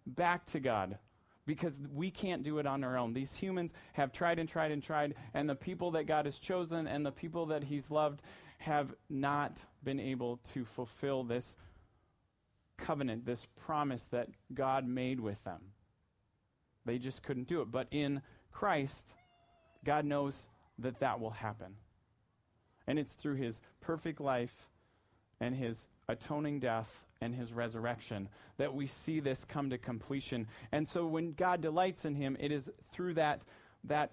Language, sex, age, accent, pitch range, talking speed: English, male, 30-49, American, 120-160 Hz, 165 wpm